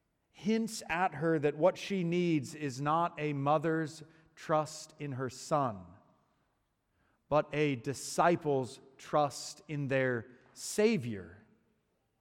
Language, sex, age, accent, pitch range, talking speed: English, male, 30-49, American, 125-180 Hz, 110 wpm